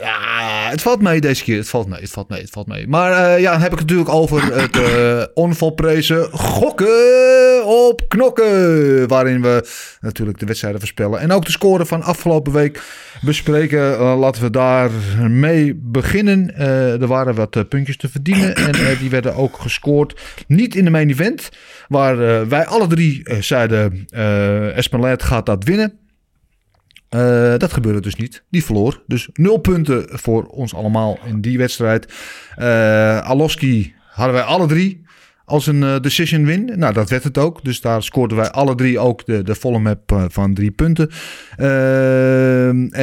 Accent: Dutch